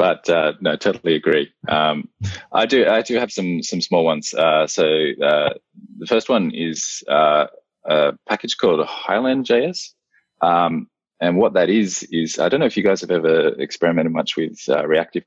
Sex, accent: male, Australian